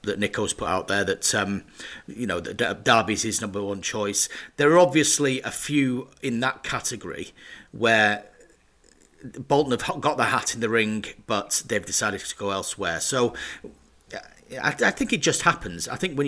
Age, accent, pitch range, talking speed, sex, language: 40-59, British, 105-145 Hz, 175 wpm, male, English